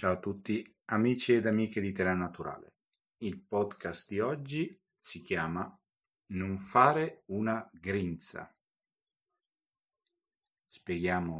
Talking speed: 105 wpm